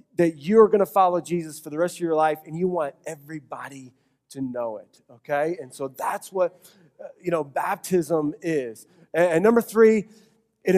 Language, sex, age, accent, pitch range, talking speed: English, male, 30-49, American, 160-215 Hz, 180 wpm